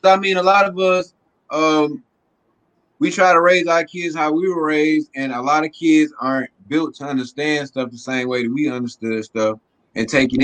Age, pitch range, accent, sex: 20-39, 120-155 Hz, American, male